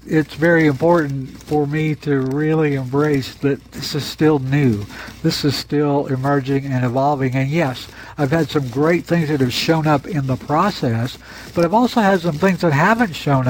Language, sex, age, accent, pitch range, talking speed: English, male, 60-79, American, 130-160 Hz, 185 wpm